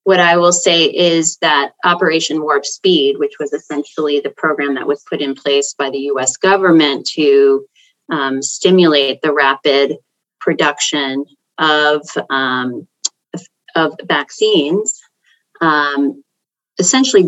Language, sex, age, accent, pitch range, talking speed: English, female, 30-49, American, 150-205 Hz, 120 wpm